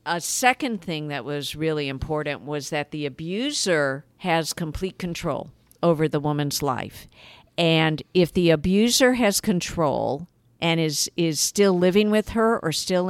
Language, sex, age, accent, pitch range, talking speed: English, female, 50-69, American, 145-185 Hz, 150 wpm